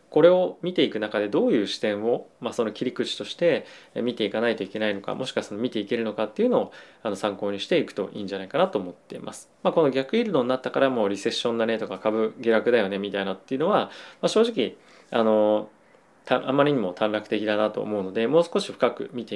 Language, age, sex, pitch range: Japanese, 20-39, male, 105-145 Hz